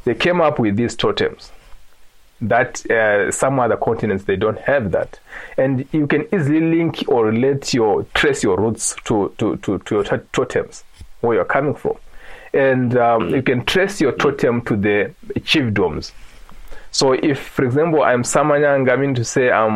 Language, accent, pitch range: English, South African, 115-155 Hz